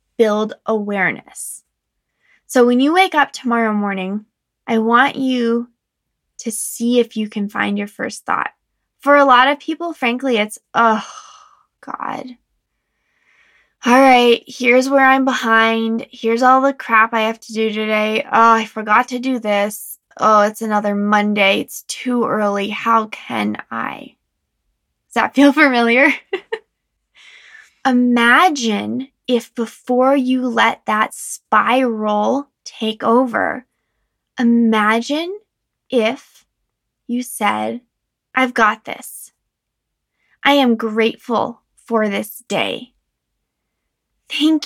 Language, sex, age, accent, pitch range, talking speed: English, female, 10-29, American, 215-255 Hz, 120 wpm